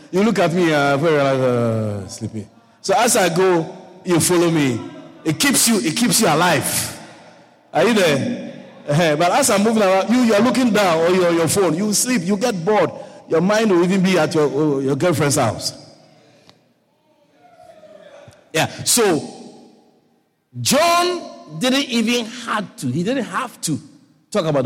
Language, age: English, 50-69